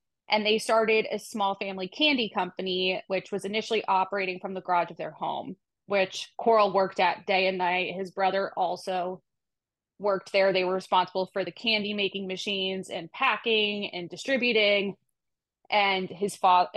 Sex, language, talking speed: female, English, 160 wpm